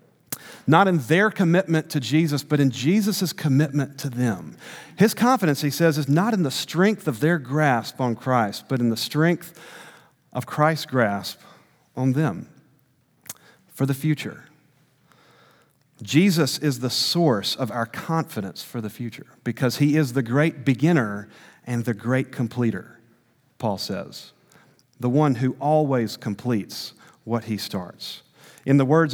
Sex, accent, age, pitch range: male, American, 40-59, 125-165 Hz